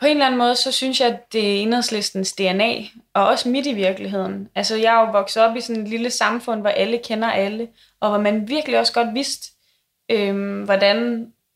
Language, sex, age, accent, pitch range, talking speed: Danish, female, 20-39, native, 195-235 Hz, 220 wpm